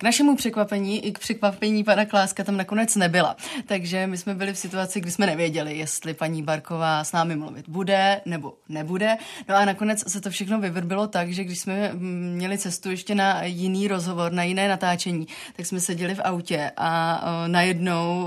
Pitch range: 170-200 Hz